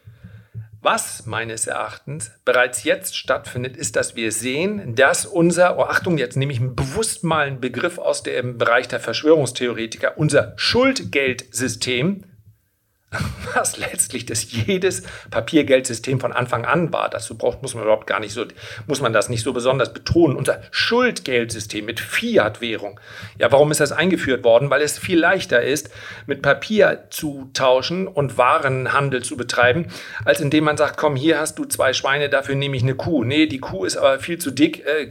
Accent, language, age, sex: German, German, 40-59, male